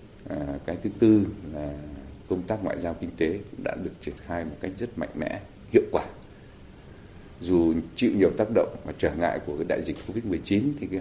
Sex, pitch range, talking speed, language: male, 85-100 Hz, 215 wpm, Vietnamese